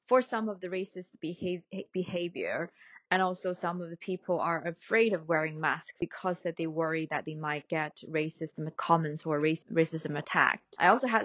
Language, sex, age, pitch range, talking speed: English, female, 20-39, 165-200 Hz, 180 wpm